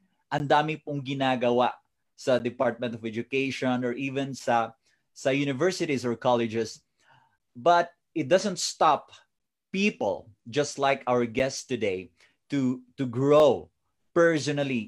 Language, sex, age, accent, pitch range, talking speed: English, male, 20-39, Filipino, 115-145 Hz, 115 wpm